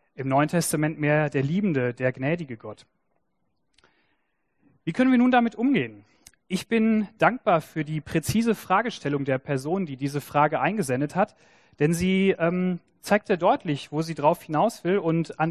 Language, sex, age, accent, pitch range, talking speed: German, male, 40-59, German, 145-190 Hz, 165 wpm